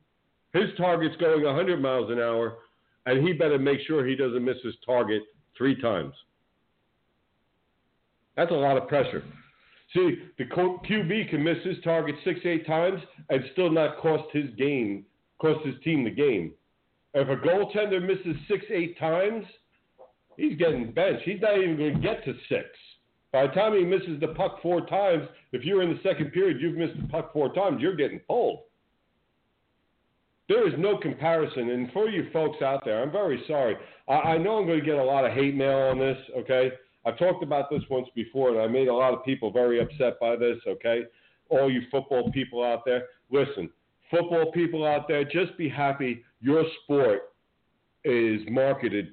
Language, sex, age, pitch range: English, male, 50-69, 125-175 Hz